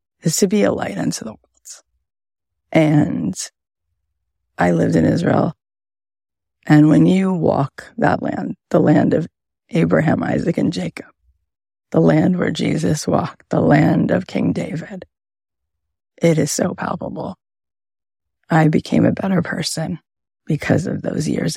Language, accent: English, American